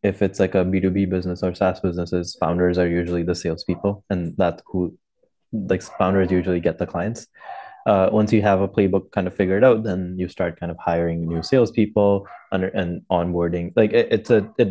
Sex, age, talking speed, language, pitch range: male, 20-39, 210 wpm, English, 90-100 Hz